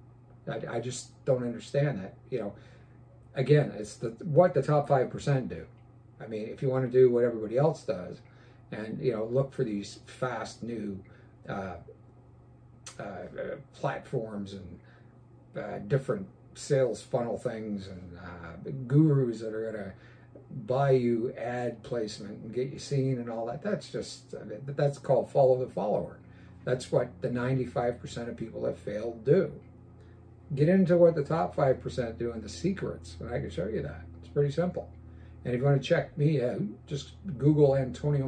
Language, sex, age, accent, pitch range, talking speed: English, male, 50-69, American, 110-135 Hz, 170 wpm